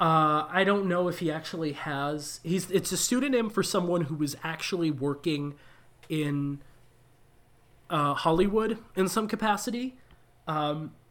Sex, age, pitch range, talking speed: male, 30-49, 135-175 Hz, 135 wpm